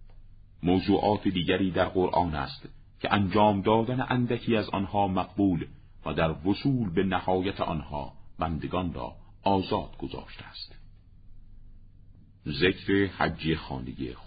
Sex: male